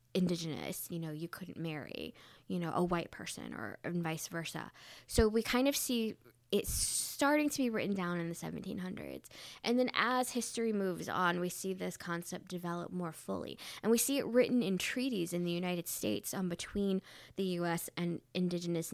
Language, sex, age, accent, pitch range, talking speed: English, female, 10-29, American, 170-195 Hz, 185 wpm